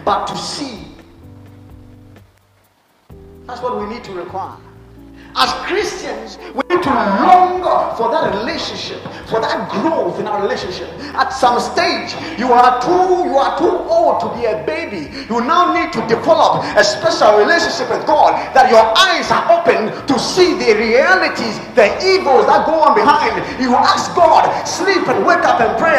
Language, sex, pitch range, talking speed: English, male, 235-350 Hz, 165 wpm